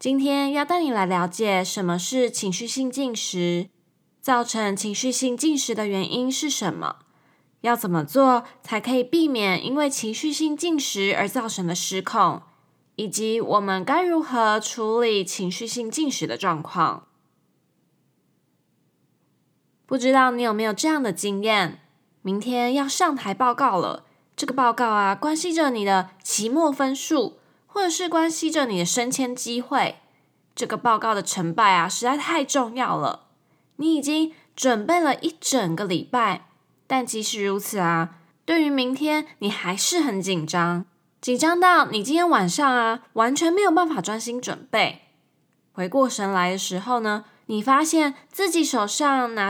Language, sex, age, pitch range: Chinese, female, 20-39, 205-285 Hz